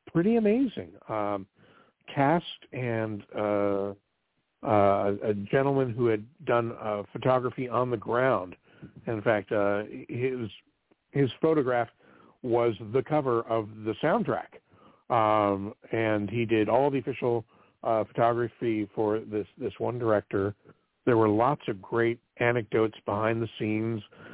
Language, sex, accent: English, male, American